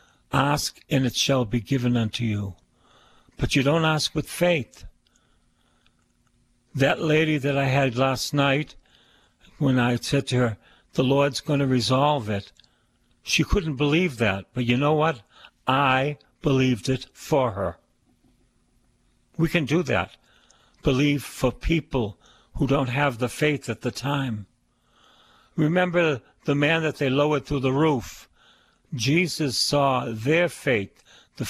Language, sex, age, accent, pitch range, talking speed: English, male, 60-79, American, 125-175 Hz, 140 wpm